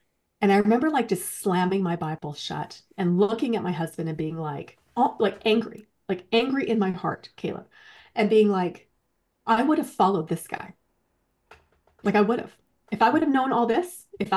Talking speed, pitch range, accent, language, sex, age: 190 wpm, 180-240 Hz, American, English, female, 30-49